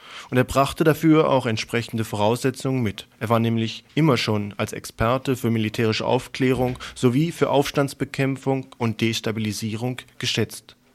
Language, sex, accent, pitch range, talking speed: German, male, German, 110-135 Hz, 130 wpm